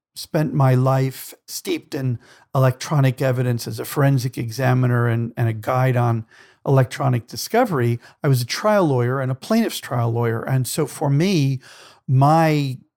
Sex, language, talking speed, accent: male, English, 155 wpm, American